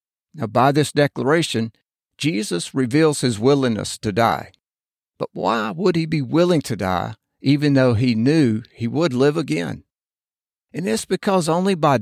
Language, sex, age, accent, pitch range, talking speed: English, male, 50-69, American, 120-155 Hz, 155 wpm